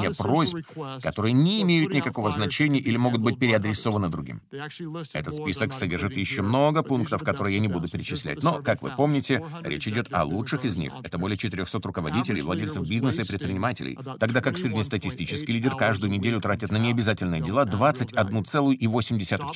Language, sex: Russian, male